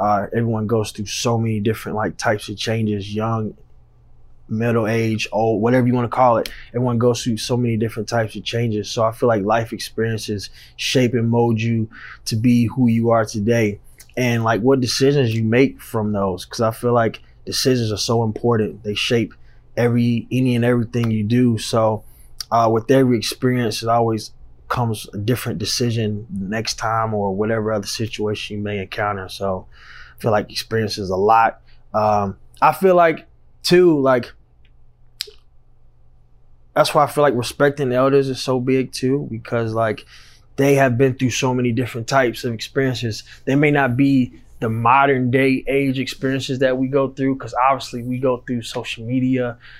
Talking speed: 180 wpm